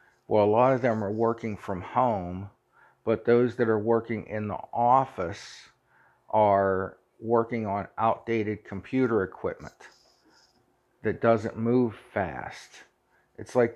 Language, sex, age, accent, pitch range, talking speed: English, male, 50-69, American, 100-120 Hz, 125 wpm